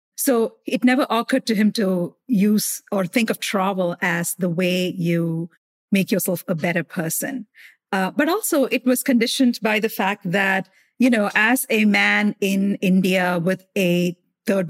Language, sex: English, female